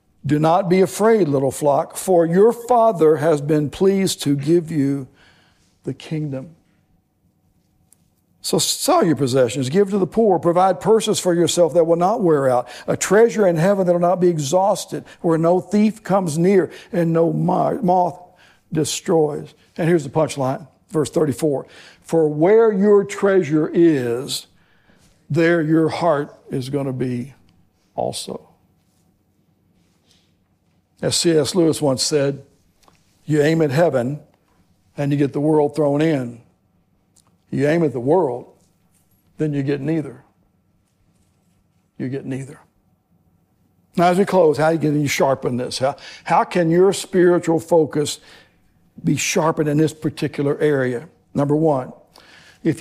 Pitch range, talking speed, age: 130-175 Hz, 140 wpm, 60-79